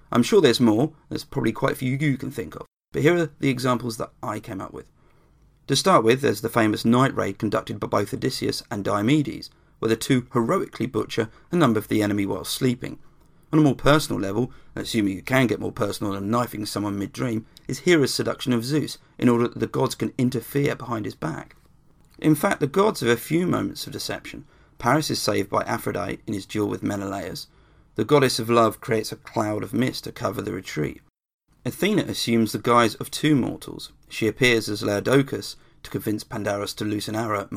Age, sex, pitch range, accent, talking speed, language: 40-59, male, 110-145 Hz, British, 205 wpm, English